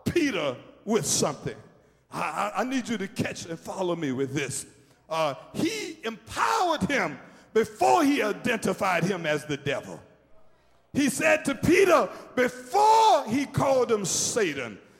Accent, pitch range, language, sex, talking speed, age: American, 205-325 Hz, English, male, 140 wpm, 50-69